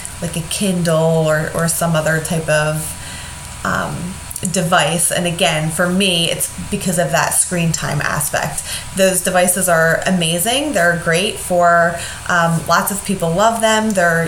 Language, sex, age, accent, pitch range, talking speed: English, female, 20-39, American, 170-215 Hz, 150 wpm